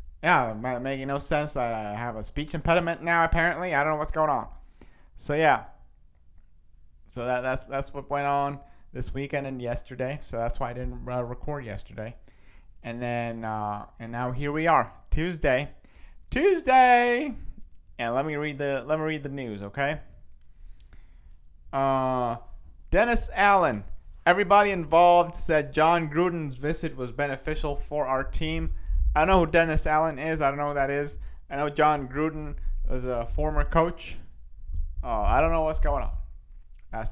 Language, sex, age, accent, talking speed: English, male, 30-49, American, 170 wpm